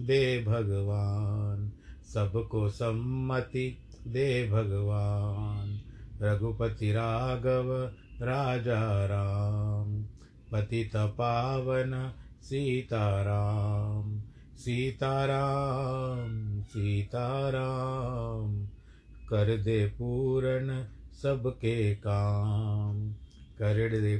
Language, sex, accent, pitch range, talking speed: Hindi, male, native, 100-115 Hz, 55 wpm